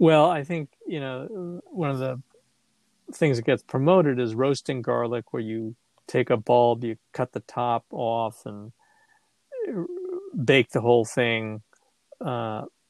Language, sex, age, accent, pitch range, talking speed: English, male, 40-59, American, 110-140 Hz, 145 wpm